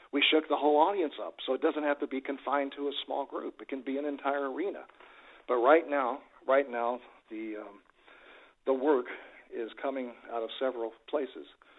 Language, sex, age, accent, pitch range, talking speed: English, male, 50-69, American, 115-140 Hz, 195 wpm